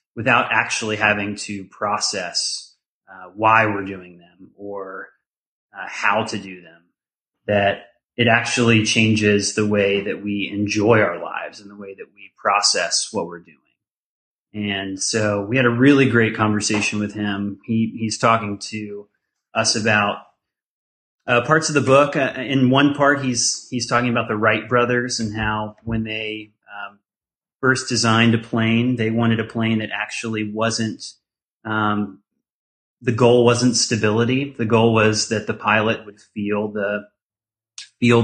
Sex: male